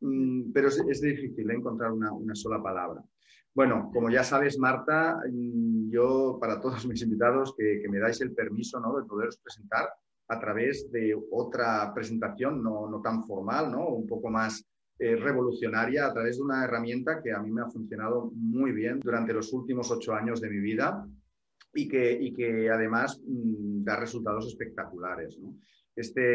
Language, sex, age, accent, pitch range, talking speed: Spanish, male, 30-49, Spanish, 110-130 Hz, 175 wpm